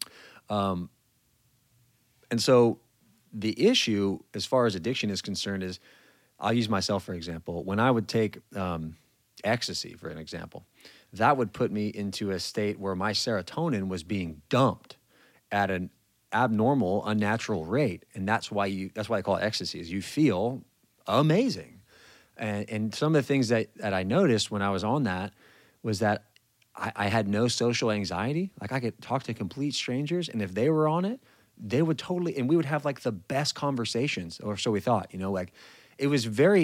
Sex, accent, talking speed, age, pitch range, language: male, American, 190 wpm, 30-49, 95-120 Hz, English